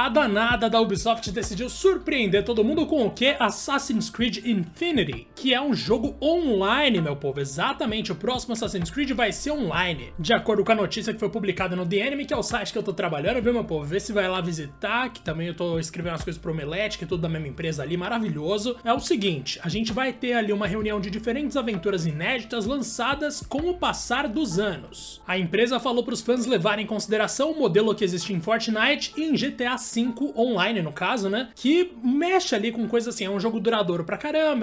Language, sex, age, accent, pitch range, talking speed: Portuguese, male, 20-39, Brazilian, 195-255 Hz, 220 wpm